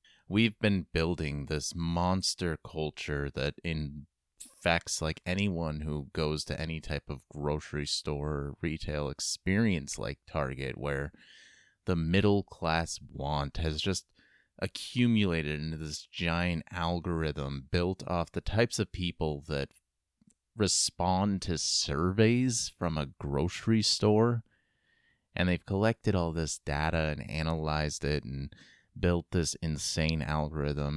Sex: male